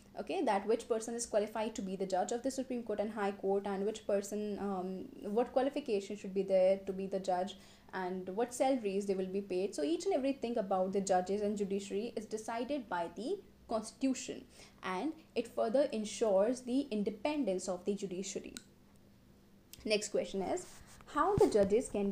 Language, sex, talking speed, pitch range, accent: English, female, 180 wpm, 200-265 Hz, Indian